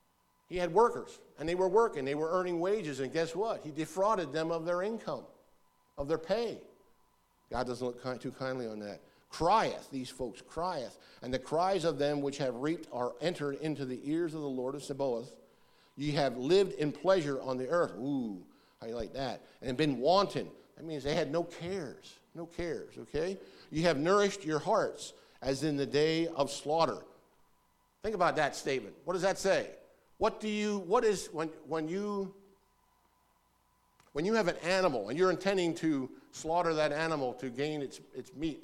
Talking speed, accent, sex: 190 wpm, American, male